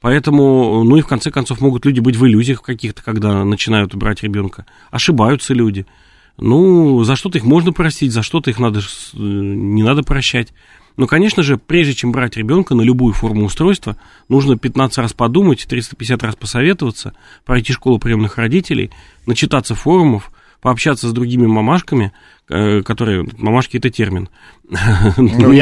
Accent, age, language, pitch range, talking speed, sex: native, 30-49, Russian, 110-140 Hz, 150 wpm, male